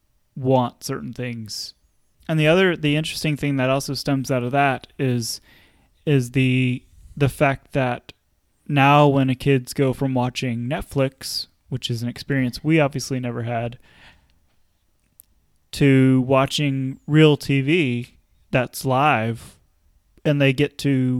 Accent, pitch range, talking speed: American, 120-145 Hz, 135 wpm